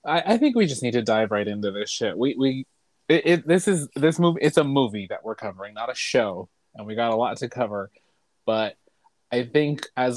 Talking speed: 235 wpm